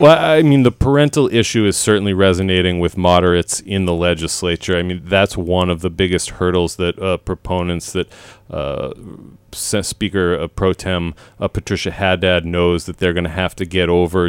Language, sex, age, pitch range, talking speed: English, male, 30-49, 90-100 Hz, 180 wpm